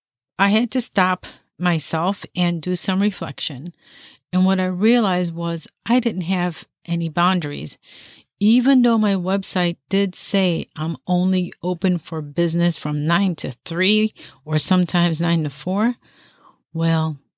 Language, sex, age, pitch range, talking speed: English, female, 50-69, 160-195 Hz, 140 wpm